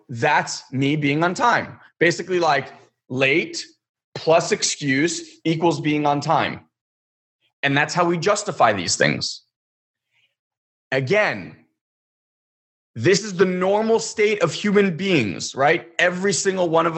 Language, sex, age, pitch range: English, male, 30-49, 140-190 Hz